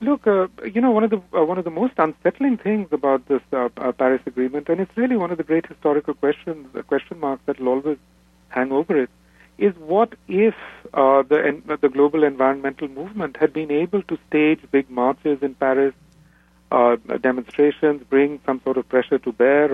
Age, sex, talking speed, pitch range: 40-59, male, 200 wpm, 130-185 Hz